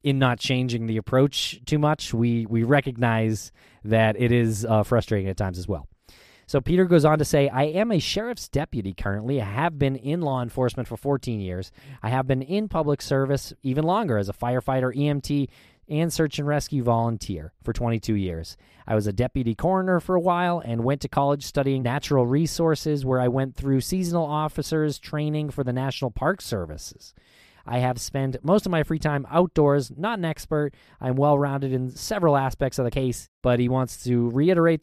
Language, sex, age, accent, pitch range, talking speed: English, male, 20-39, American, 115-150 Hz, 195 wpm